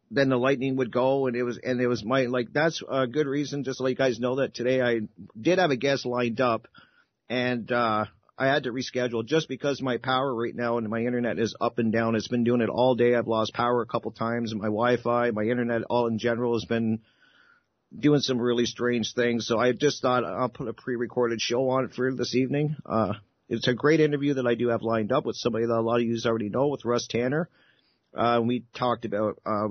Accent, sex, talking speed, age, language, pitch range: American, male, 240 wpm, 50-69, English, 115-130 Hz